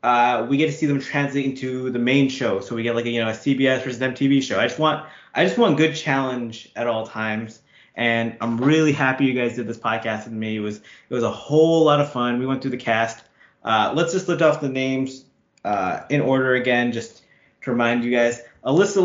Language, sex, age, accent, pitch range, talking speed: English, male, 20-39, American, 120-150 Hz, 240 wpm